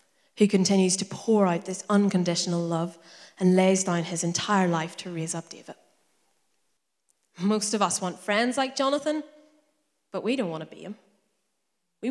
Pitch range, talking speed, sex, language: 180-220 Hz, 165 wpm, female, English